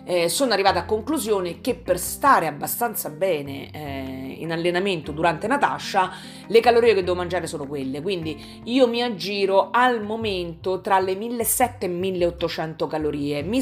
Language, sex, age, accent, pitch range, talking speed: Italian, female, 40-59, native, 155-195 Hz, 155 wpm